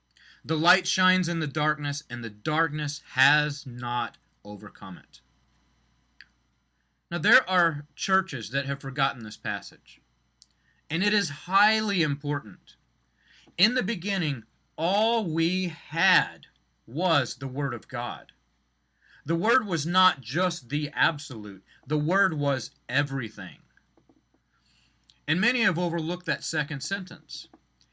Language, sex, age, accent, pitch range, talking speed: English, male, 30-49, American, 130-175 Hz, 120 wpm